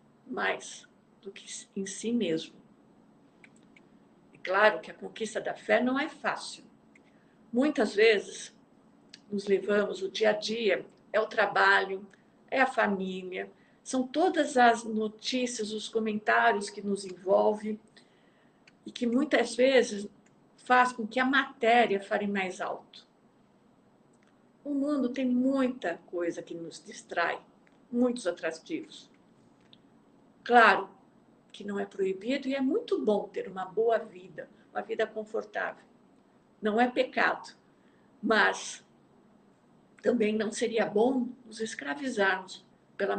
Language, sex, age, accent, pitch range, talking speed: Portuguese, female, 50-69, Brazilian, 205-250 Hz, 120 wpm